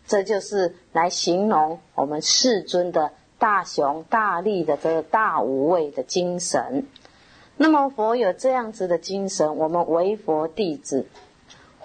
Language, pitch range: Chinese, 165-225 Hz